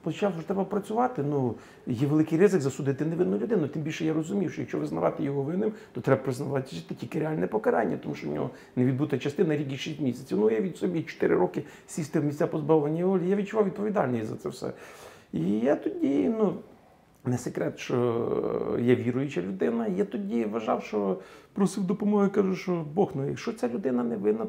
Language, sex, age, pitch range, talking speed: Ukrainian, male, 40-59, 150-215 Hz, 195 wpm